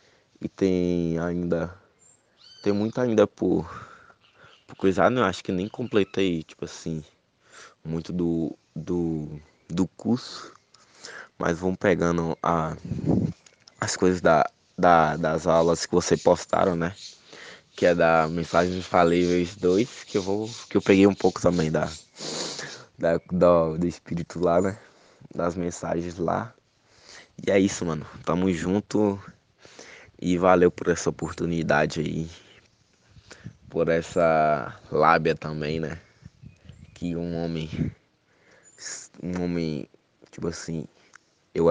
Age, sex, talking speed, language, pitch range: 20-39, male, 125 wpm, Portuguese, 80-95 Hz